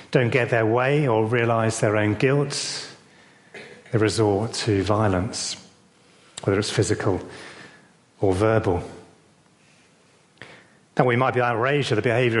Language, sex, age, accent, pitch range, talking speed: English, male, 40-59, British, 110-140 Hz, 125 wpm